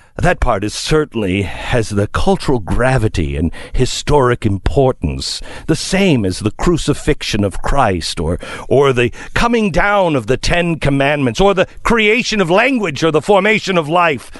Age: 50-69